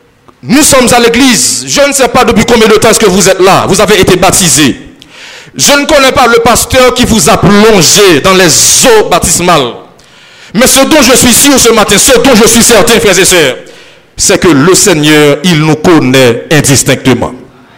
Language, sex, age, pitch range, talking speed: French, male, 50-69, 220-275 Hz, 200 wpm